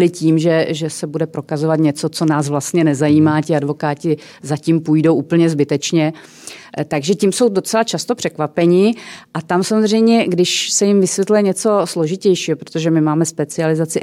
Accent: native